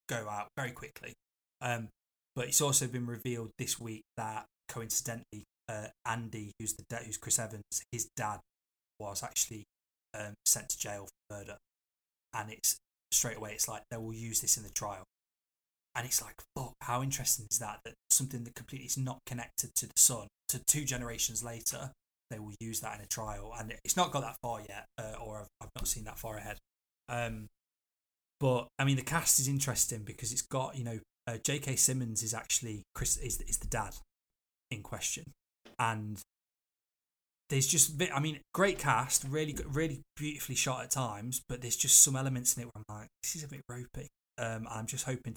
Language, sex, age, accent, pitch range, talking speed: English, male, 10-29, British, 110-130 Hz, 195 wpm